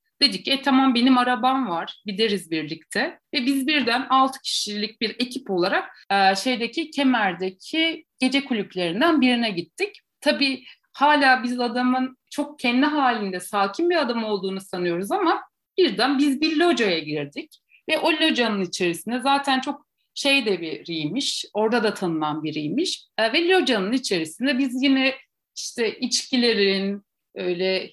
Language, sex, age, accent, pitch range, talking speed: Turkish, female, 60-79, native, 210-310 Hz, 135 wpm